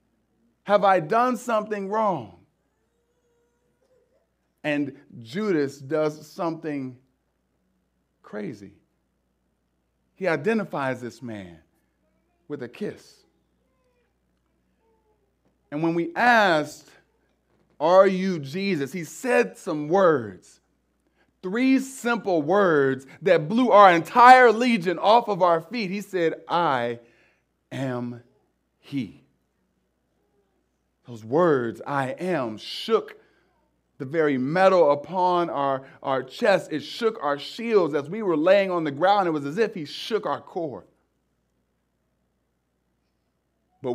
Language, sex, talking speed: English, male, 105 wpm